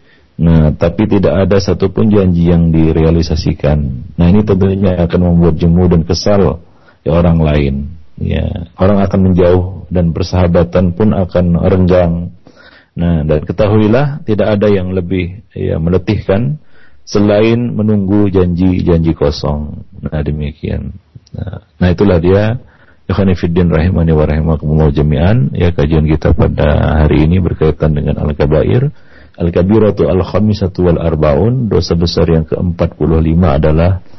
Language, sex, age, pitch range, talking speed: Malay, male, 40-59, 75-95 Hz, 125 wpm